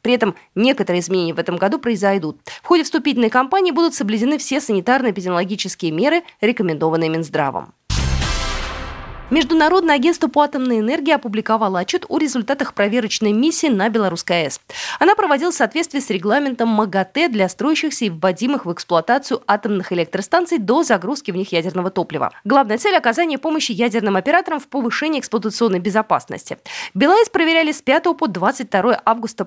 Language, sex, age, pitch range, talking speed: Russian, female, 20-39, 190-285 Hz, 145 wpm